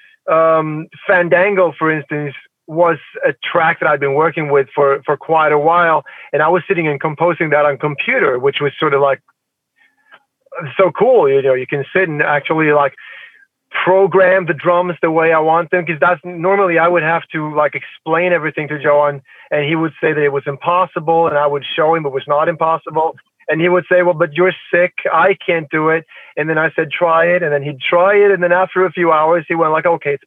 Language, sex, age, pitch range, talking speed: English, male, 30-49, 155-190 Hz, 220 wpm